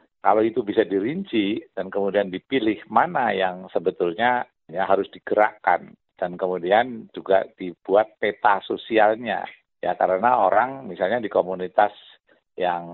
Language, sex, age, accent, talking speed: Indonesian, male, 50-69, native, 120 wpm